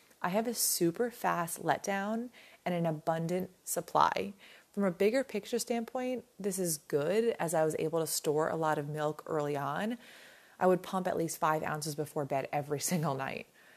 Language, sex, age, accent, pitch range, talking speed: English, female, 30-49, American, 160-215 Hz, 185 wpm